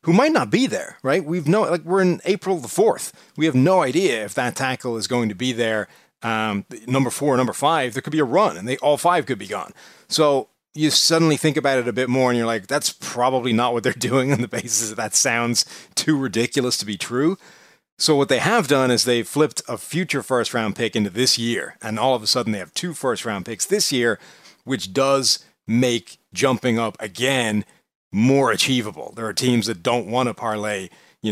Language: English